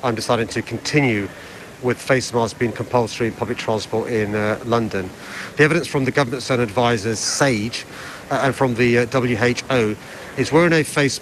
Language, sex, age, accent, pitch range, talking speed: English, male, 40-59, British, 120-145 Hz, 175 wpm